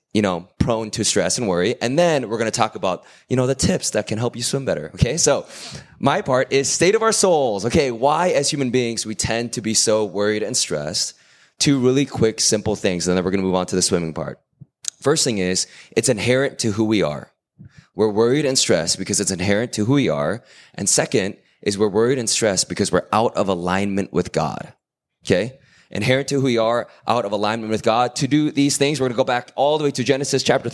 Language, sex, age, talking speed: English, male, 20-39, 240 wpm